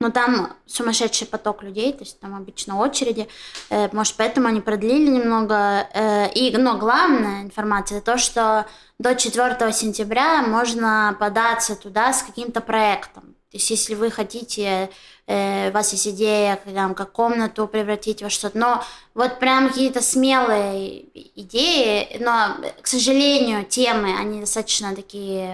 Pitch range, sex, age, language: 205-240 Hz, female, 20-39, Russian